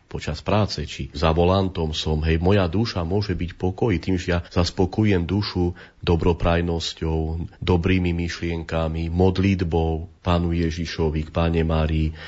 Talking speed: 125 wpm